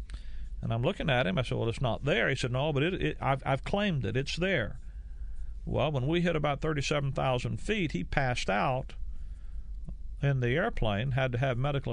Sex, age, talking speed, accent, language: male, 40-59, 200 wpm, American, English